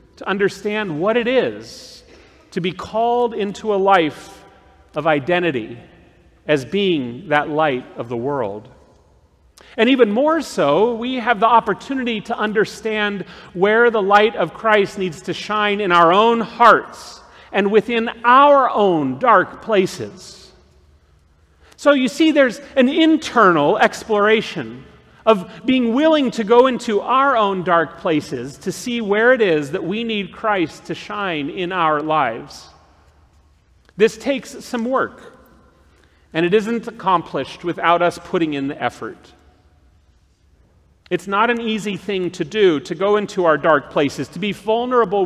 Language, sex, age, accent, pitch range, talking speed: English, male, 40-59, American, 150-220 Hz, 145 wpm